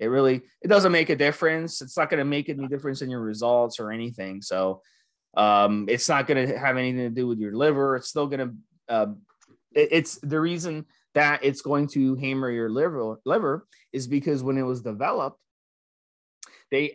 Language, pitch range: English, 125-160 Hz